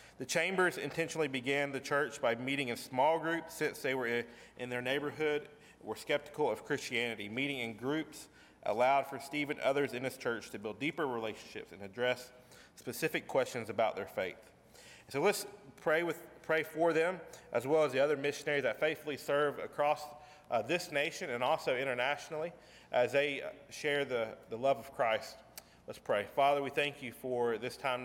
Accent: American